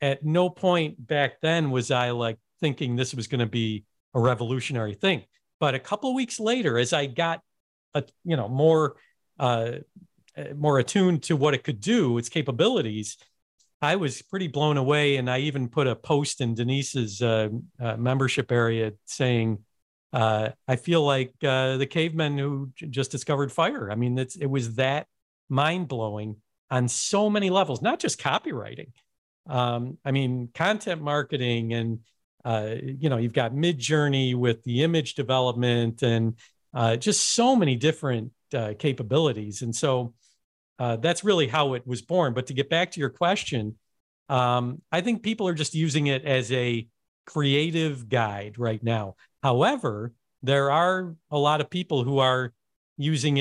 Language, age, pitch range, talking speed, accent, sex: English, 50-69, 120-155 Hz, 170 wpm, American, male